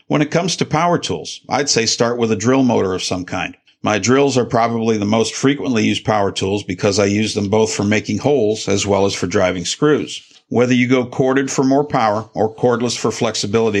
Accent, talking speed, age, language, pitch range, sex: American, 220 wpm, 50-69, English, 105-130 Hz, male